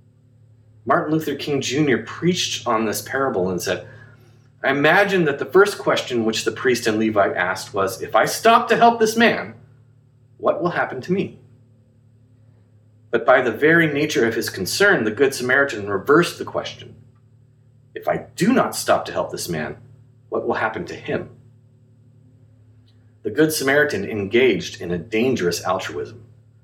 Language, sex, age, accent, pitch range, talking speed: English, male, 30-49, American, 115-130 Hz, 160 wpm